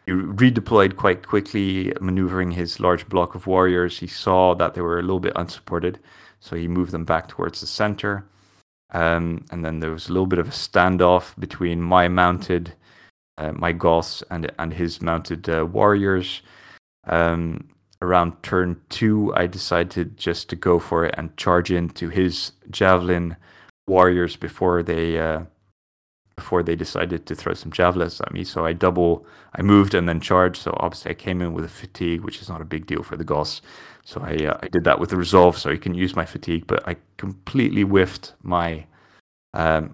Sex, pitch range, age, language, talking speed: male, 85-95 Hz, 20-39, English, 190 wpm